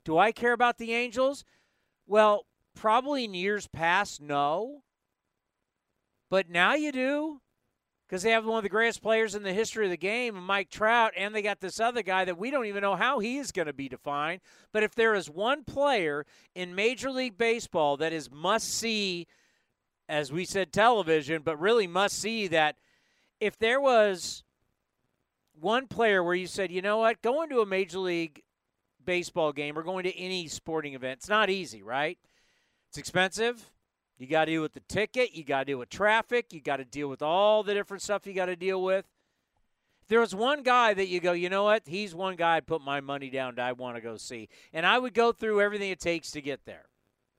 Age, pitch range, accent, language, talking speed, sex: 50-69, 160-220 Hz, American, English, 205 wpm, male